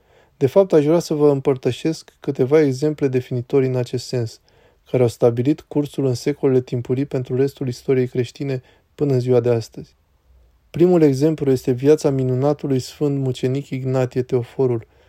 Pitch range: 125-140 Hz